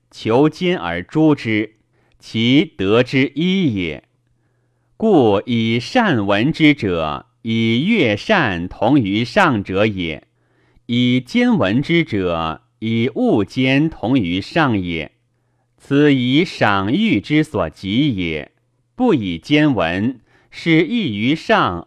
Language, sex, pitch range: Chinese, male, 105-150 Hz